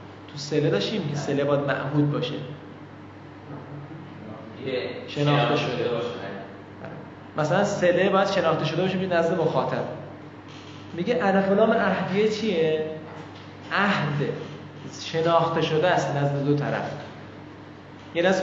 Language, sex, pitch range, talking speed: Persian, male, 135-190 Hz, 105 wpm